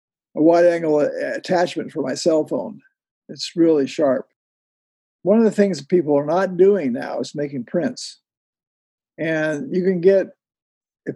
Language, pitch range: English, 145-180 Hz